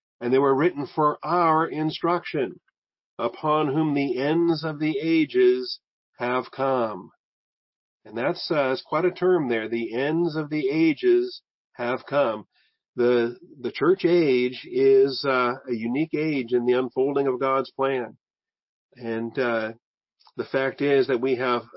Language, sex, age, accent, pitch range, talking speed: English, male, 50-69, American, 130-175 Hz, 150 wpm